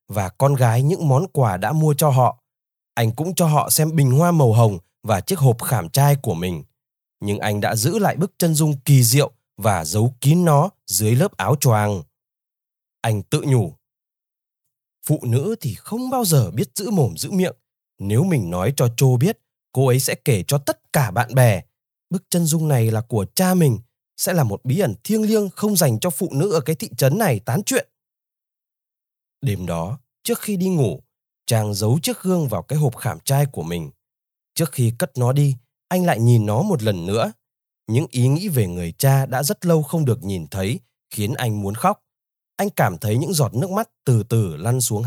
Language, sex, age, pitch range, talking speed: Vietnamese, male, 20-39, 115-165 Hz, 210 wpm